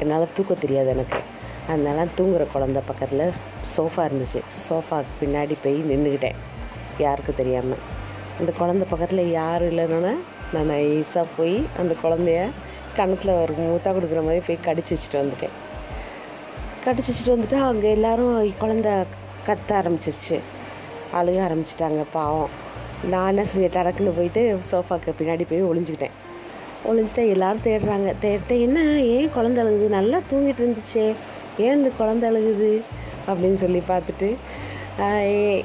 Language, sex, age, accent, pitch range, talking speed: Tamil, female, 20-39, native, 145-195 Hz, 120 wpm